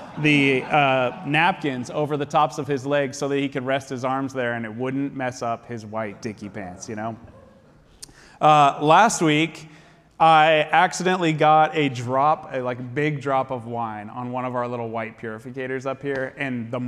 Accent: American